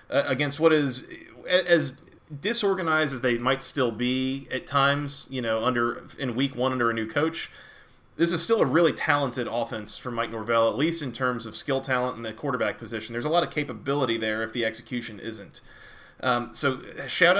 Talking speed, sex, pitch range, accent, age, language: 195 wpm, male, 125-160 Hz, American, 30-49, English